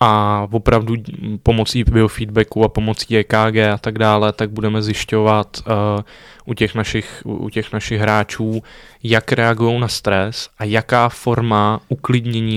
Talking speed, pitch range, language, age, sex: 140 wpm, 105-125 Hz, Czech, 20-39, male